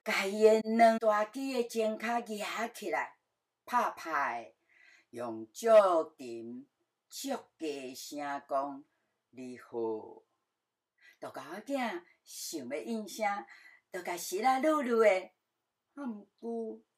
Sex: female